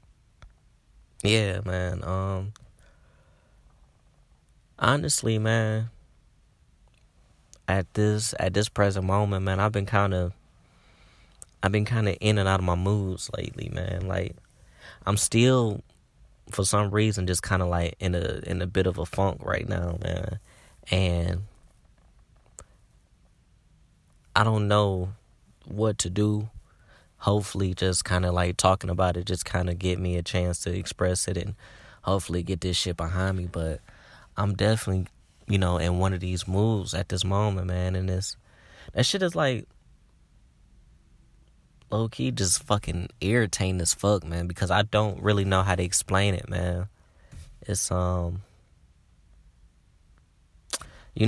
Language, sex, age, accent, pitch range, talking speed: English, male, 20-39, American, 90-105 Hz, 140 wpm